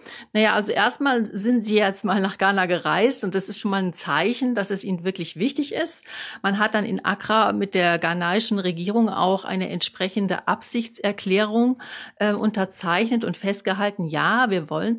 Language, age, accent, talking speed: German, 40-59, German, 170 wpm